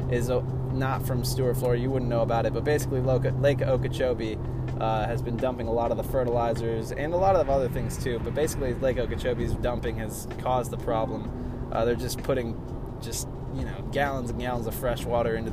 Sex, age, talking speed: male, 20-39, 205 wpm